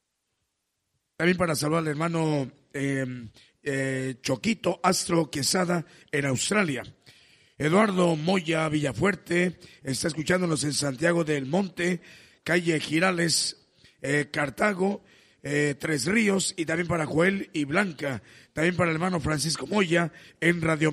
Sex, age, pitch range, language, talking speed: male, 50-69, 150-180 Hz, Spanish, 120 wpm